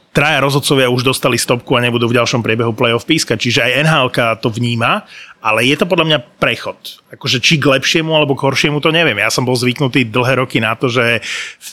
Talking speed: 215 wpm